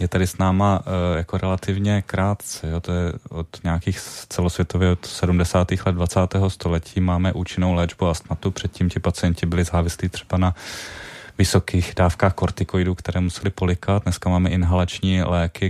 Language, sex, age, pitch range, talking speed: Czech, male, 30-49, 85-95 Hz, 145 wpm